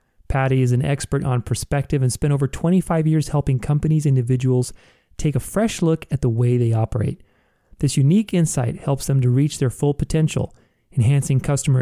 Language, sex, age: English, male, 30-49